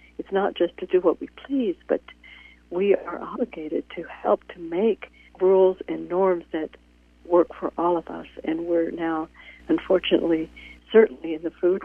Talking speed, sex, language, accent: 165 wpm, female, English, American